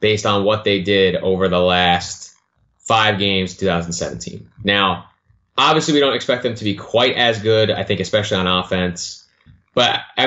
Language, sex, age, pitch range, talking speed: English, male, 20-39, 95-125 Hz, 170 wpm